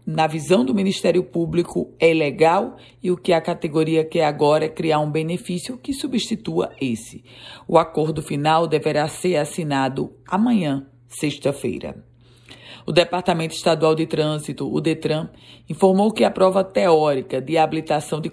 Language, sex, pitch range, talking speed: Portuguese, female, 135-175 Hz, 145 wpm